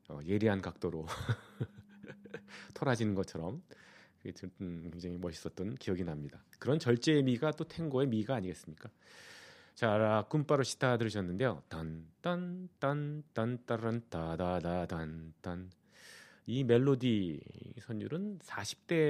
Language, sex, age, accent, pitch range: Korean, male, 40-59, native, 95-135 Hz